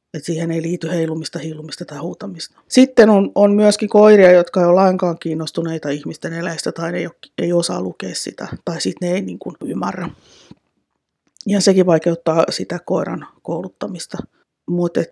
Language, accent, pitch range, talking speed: Finnish, native, 165-180 Hz, 160 wpm